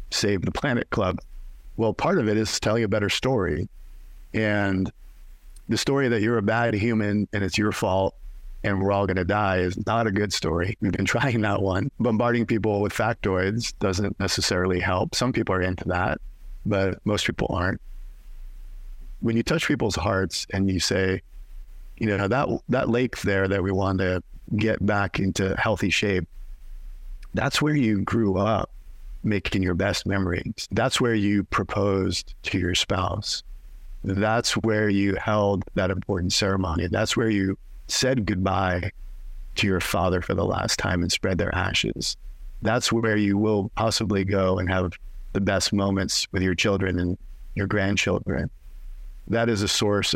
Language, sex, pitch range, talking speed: English, male, 90-105 Hz, 165 wpm